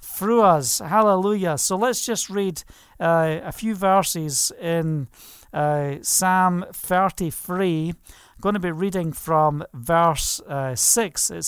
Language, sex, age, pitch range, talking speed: English, male, 40-59, 165-215 Hz, 130 wpm